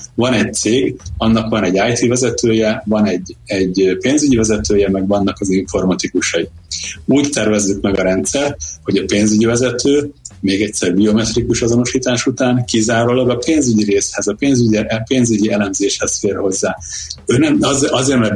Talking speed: 145 wpm